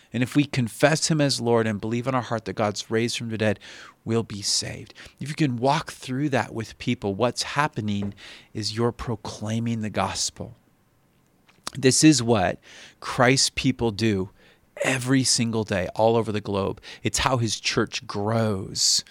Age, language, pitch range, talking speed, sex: 40-59, English, 105-125 Hz, 170 wpm, male